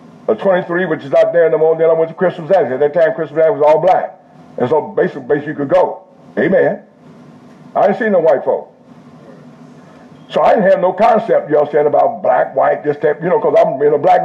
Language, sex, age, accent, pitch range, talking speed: English, male, 60-79, American, 180-225 Hz, 240 wpm